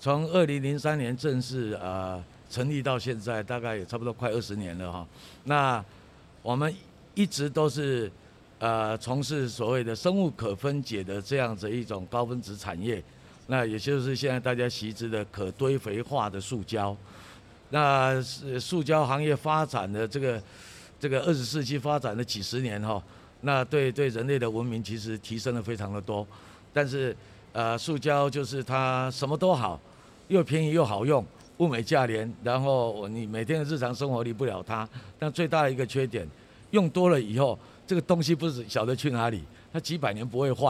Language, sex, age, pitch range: Chinese, male, 50-69, 110-145 Hz